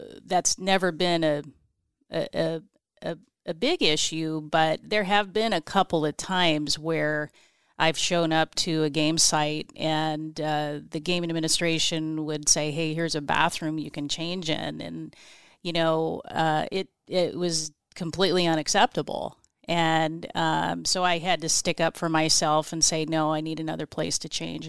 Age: 30-49